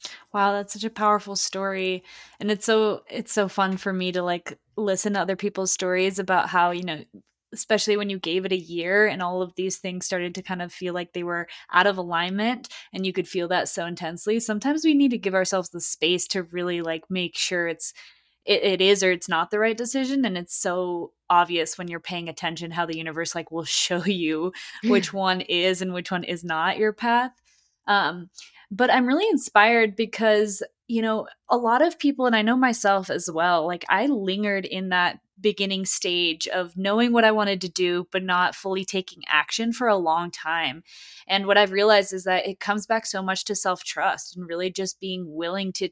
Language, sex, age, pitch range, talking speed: English, female, 20-39, 175-210 Hz, 215 wpm